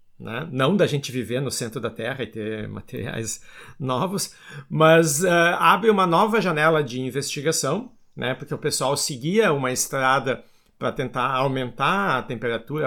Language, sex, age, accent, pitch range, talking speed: Portuguese, male, 50-69, Brazilian, 115-155 Hz, 150 wpm